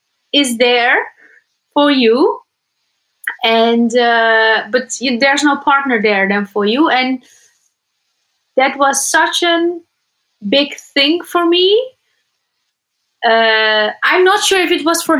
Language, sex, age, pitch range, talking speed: English, female, 30-49, 230-305 Hz, 125 wpm